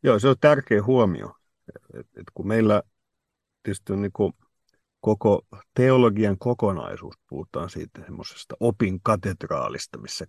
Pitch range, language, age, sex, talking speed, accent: 95-110 Hz, Finnish, 50-69, male, 110 wpm, native